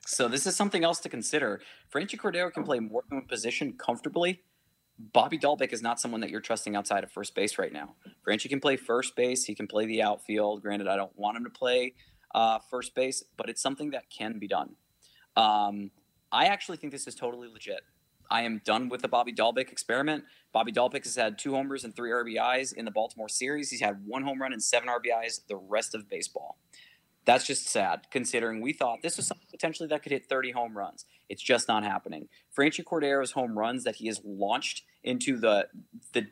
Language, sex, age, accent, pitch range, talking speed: English, male, 20-39, American, 110-155 Hz, 215 wpm